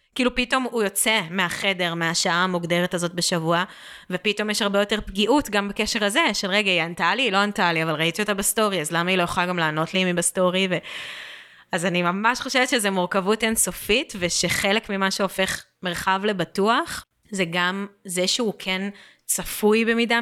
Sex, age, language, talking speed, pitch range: female, 20-39, Hebrew, 180 wpm, 180-215 Hz